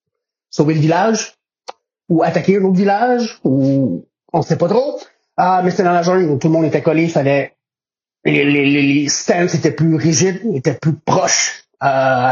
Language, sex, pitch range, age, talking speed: French, male, 150-190 Hz, 30-49, 185 wpm